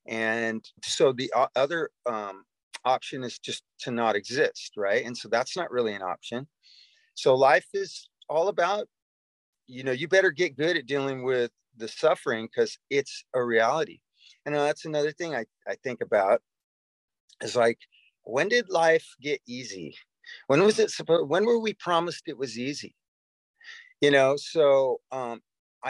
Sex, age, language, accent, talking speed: male, 30-49, English, American, 160 wpm